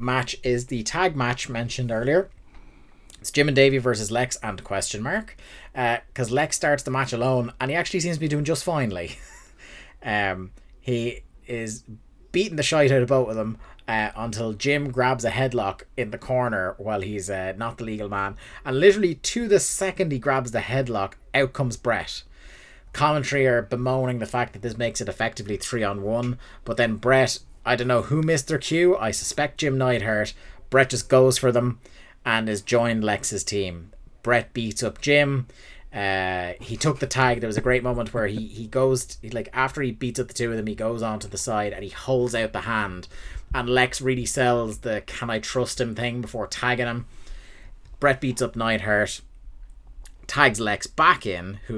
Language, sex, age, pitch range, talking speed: English, male, 30-49, 110-130 Hz, 195 wpm